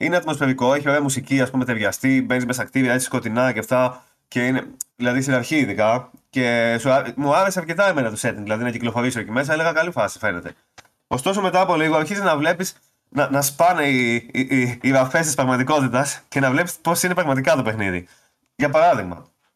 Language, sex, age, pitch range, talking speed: Greek, male, 20-39, 120-160 Hz, 185 wpm